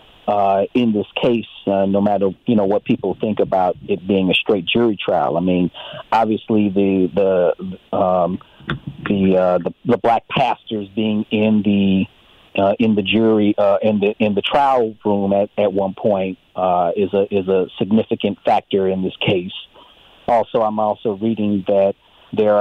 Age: 40-59